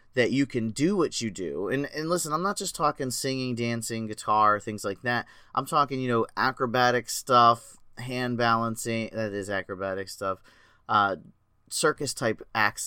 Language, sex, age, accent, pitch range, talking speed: English, male, 30-49, American, 105-140 Hz, 165 wpm